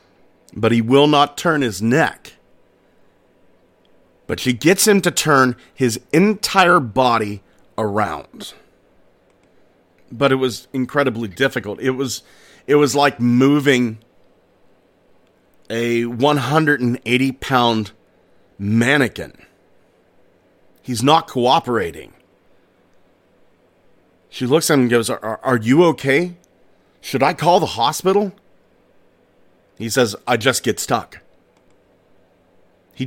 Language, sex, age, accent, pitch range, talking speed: English, male, 40-59, American, 115-145 Hz, 100 wpm